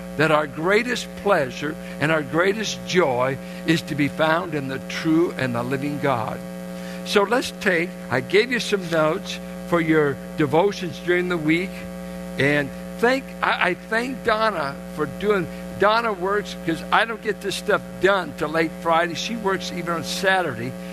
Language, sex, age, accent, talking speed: English, male, 60-79, American, 165 wpm